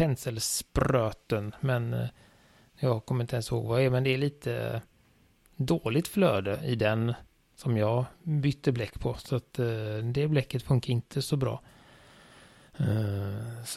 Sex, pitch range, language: male, 115-150 Hz, Swedish